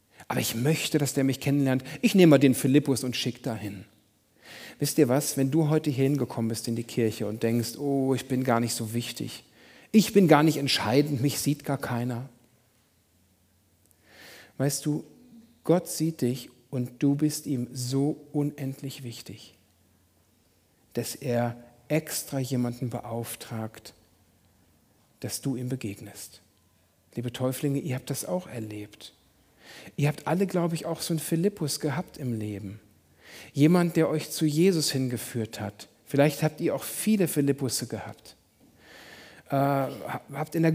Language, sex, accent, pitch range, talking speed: German, male, German, 110-150 Hz, 150 wpm